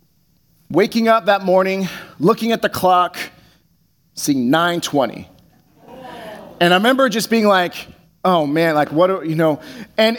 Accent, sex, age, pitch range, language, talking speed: American, male, 30-49, 165-220 Hz, English, 140 wpm